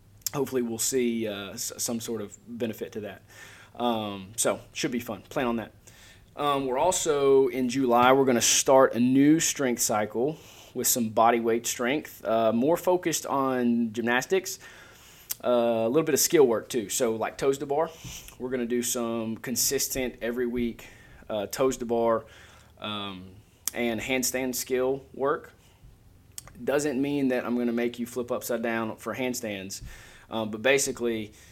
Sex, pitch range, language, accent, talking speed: male, 110-130 Hz, English, American, 160 wpm